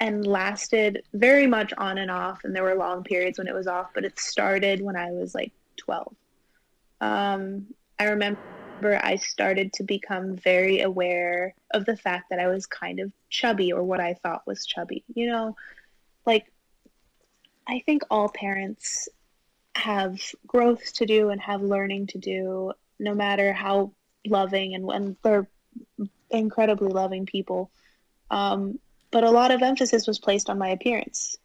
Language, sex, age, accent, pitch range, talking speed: English, female, 20-39, American, 190-220 Hz, 160 wpm